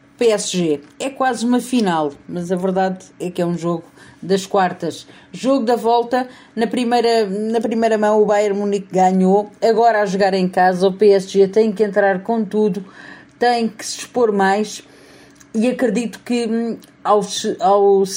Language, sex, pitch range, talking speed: Portuguese, female, 195-245 Hz, 160 wpm